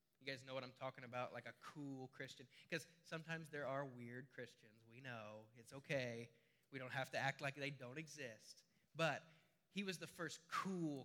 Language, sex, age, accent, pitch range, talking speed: English, male, 20-39, American, 125-160 Hz, 190 wpm